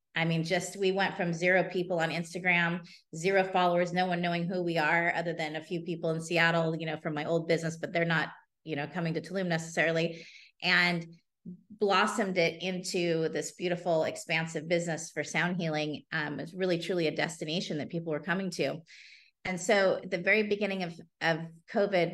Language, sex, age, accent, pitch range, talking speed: English, female, 30-49, American, 160-185 Hz, 190 wpm